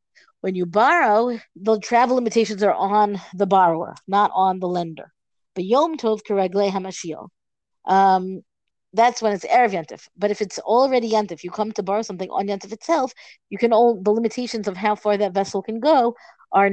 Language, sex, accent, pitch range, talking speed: English, female, American, 195-235 Hz, 170 wpm